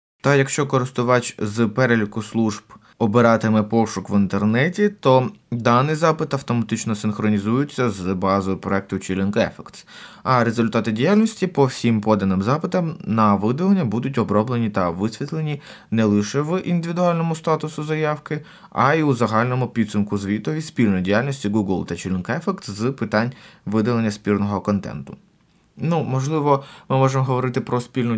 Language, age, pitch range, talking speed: Ukrainian, 20-39, 100-140 Hz, 135 wpm